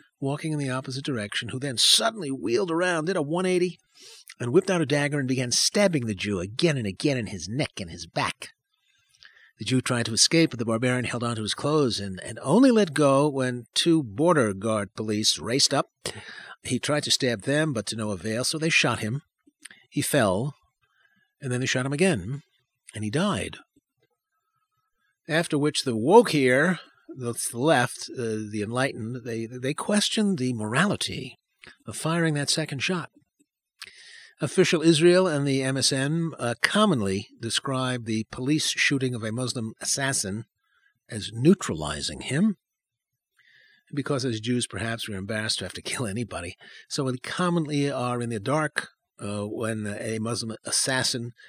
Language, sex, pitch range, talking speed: English, male, 115-165 Hz, 165 wpm